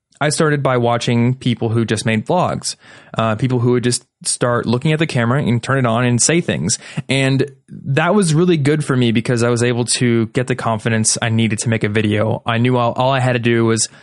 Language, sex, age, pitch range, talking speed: English, male, 20-39, 115-135 Hz, 240 wpm